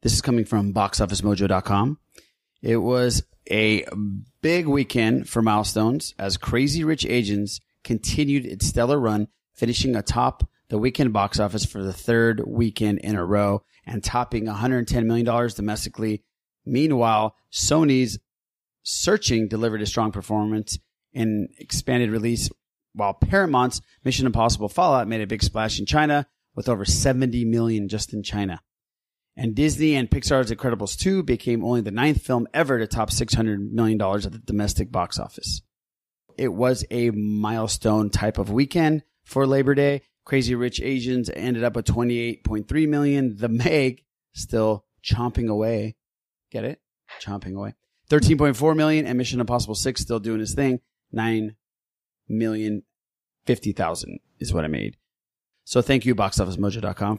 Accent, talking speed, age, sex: American, 150 wpm, 30-49, male